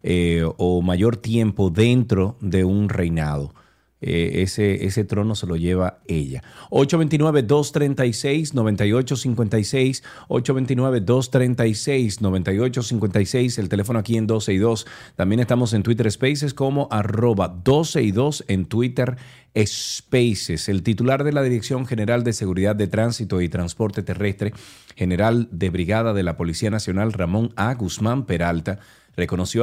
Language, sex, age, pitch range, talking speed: Spanish, male, 40-59, 95-120 Hz, 130 wpm